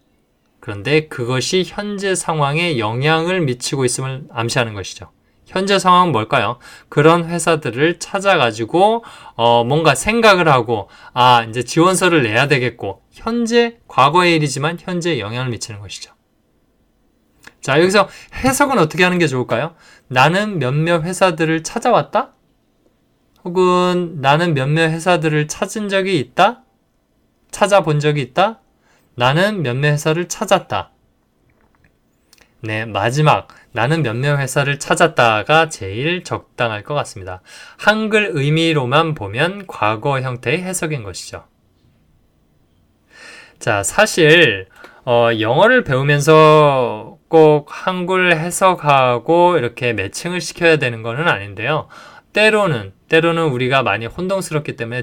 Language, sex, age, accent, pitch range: Korean, male, 20-39, native, 120-175 Hz